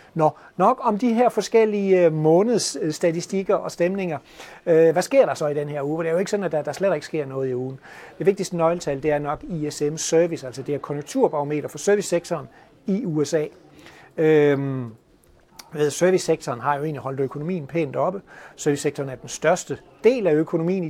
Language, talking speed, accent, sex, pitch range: Danish, 180 wpm, native, male, 150-185 Hz